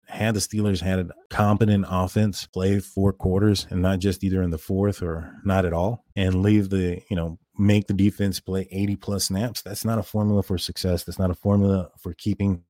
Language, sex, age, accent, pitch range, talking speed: English, male, 30-49, American, 90-105 Hz, 215 wpm